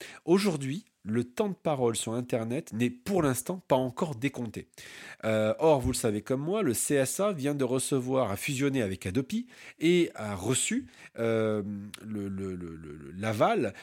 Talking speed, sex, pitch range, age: 150 wpm, male, 115-165 Hz, 40-59